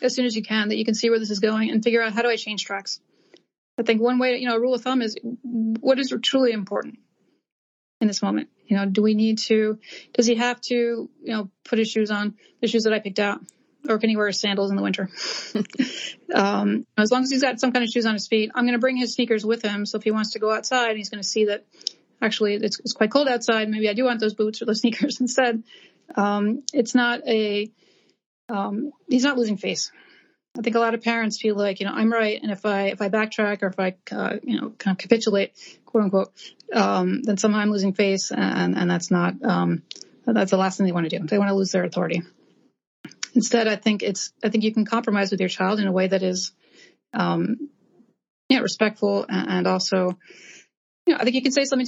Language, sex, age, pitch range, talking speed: English, female, 30-49, 200-240 Hz, 245 wpm